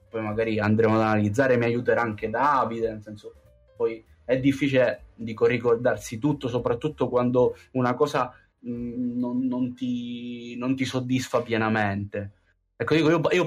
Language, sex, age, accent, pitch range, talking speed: Italian, male, 20-39, native, 115-145 Hz, 145 wpm